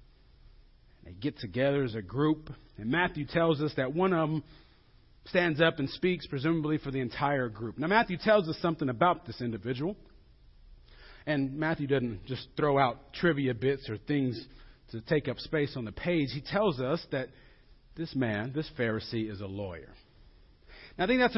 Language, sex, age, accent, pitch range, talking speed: English, male, 40-59, American, 130-200 Hz, 175 wpm